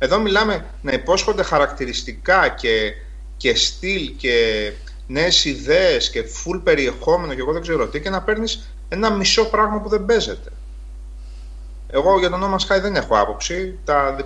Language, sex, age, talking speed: Greek, male, 30-49, 155 wpm